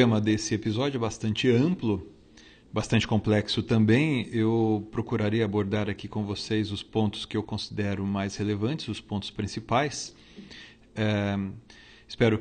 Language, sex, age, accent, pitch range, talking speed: Portuguese, male, 40-59, Brazilian, 110-125 Hz, 135 wpm